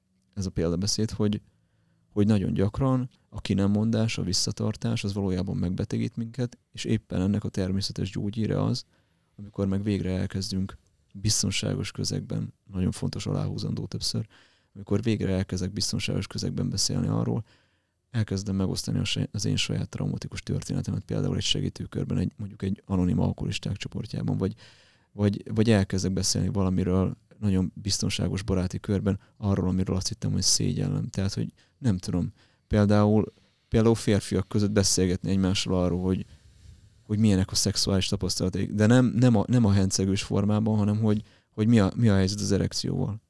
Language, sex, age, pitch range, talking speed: Hungarian, male, 30-49, 95-110 Hz, 145 wpm